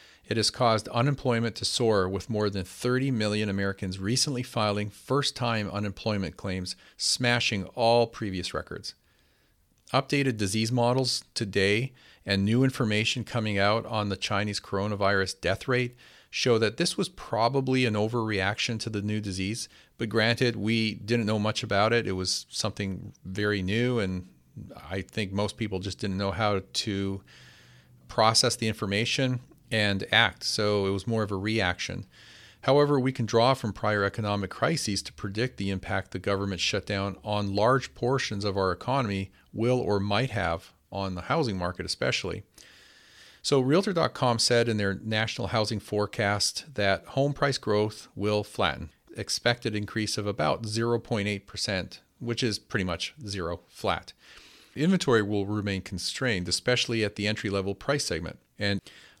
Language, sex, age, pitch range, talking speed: English, male, 40-59, 100-120 Hz, 150 wpm